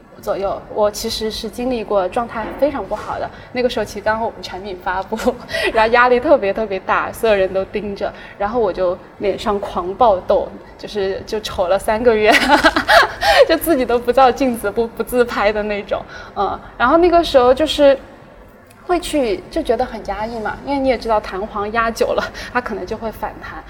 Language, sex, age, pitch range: Chinese, female, 20-39, 200-275 Hz